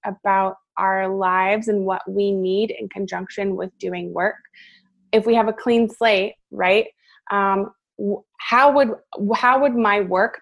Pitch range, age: 195-230 Hz, 20-39